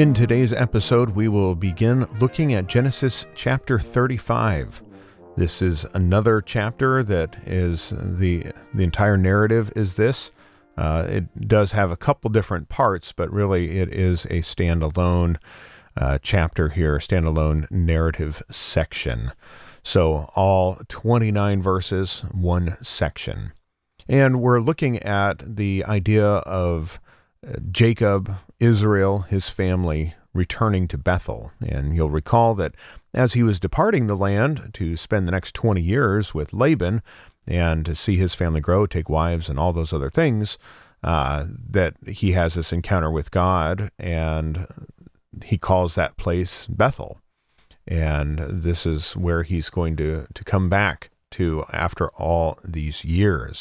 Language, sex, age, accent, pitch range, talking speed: English, male, 40-59, American, 85-110 Hz, 140 wpm